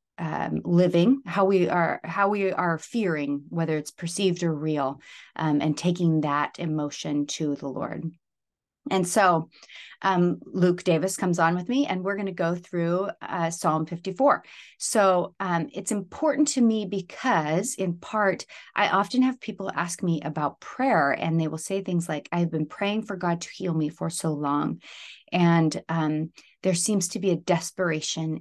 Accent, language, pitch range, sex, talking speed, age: American, English, 155-185 Hz, female, 175 wpm, 30-49